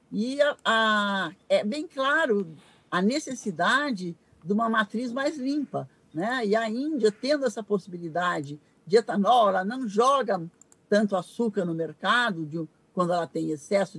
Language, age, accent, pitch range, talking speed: Portuguese, 60-79, Brazilian, 185-245 Hz, 145 wpm